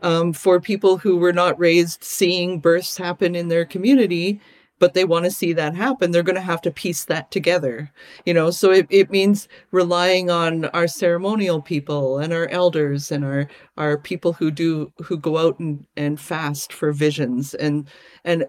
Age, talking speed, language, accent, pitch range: 40-59, 190 wpm, English, American, 155-195 Hz